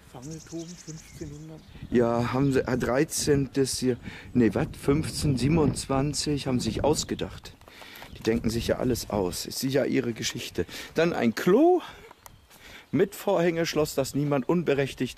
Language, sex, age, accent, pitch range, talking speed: English, male, 50-69, German, 110-150 Hz, 125 wpm